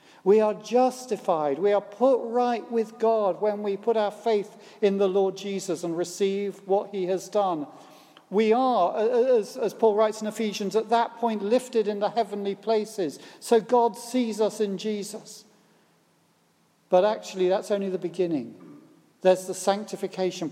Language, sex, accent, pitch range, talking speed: English, male, British, 175-225 Hz, 160 wpm